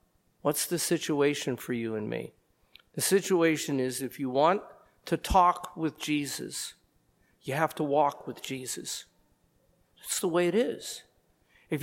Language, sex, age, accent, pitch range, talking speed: English, male, 50-69, American, 155-250 Hz, 145 wpm